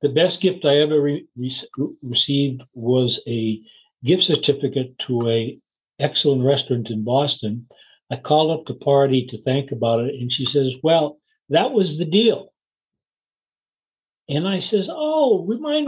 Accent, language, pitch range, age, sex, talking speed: American, English, 130-170 Hz, 60-79, male, 150 wpm